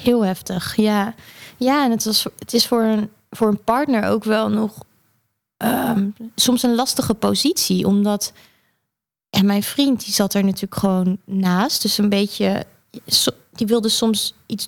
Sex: female